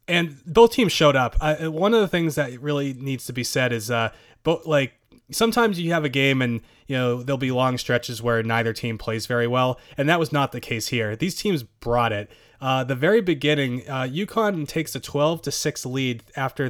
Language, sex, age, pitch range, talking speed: English, male, 20-39, 120-155 Hz, 225 wpm